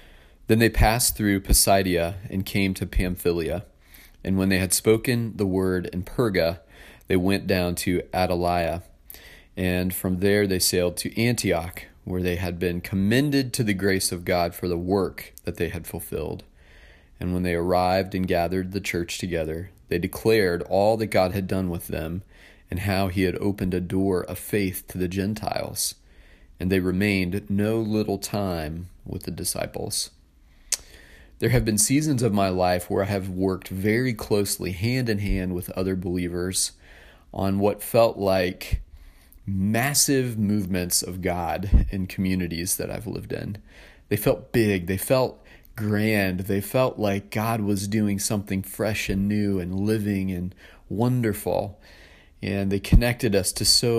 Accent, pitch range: American, 90-105 Hz